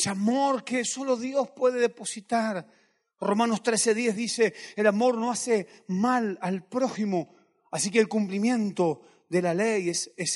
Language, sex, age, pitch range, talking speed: Spanish, male, 40-59, 190-235 Hz, 145 wpm